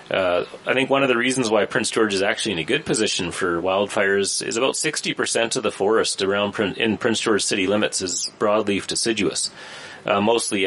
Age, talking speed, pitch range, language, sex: 30-49, 195 wpm, 95-115 Hz, English, male